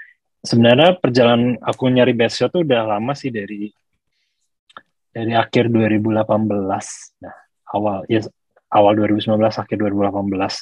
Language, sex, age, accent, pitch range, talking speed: Indonesian, male, 20-39, native, 110-140 Hz, 130 wpm